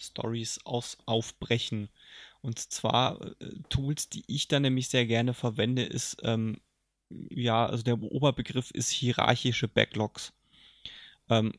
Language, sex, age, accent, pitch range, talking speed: German, male, 20-39, German, 115-140 Hz, 120 wpm